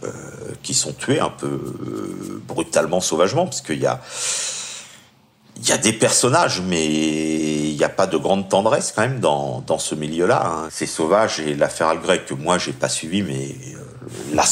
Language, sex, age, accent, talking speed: French, male, 50-69, French, 180 wpm